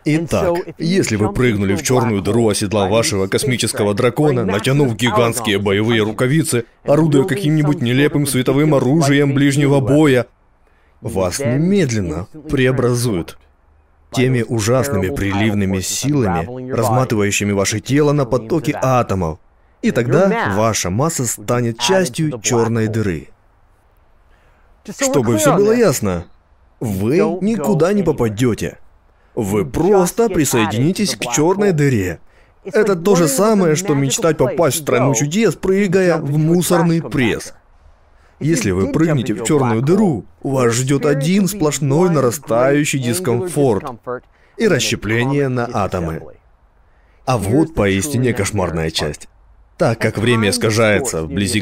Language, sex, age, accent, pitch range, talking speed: Russian, male, 20-39, native, 100-150 Hz, 115 wpm